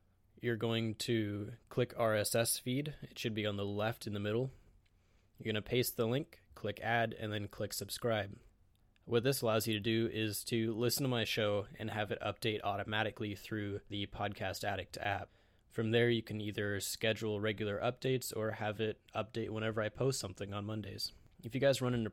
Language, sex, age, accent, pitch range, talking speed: English, male, 20-39, American, 100-115 Hz, 195 wpm